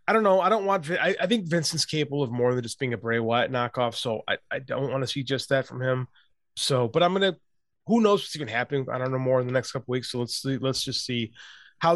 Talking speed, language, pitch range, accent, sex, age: 295 wpm, English, 130-170 Hz, American, male, 20-39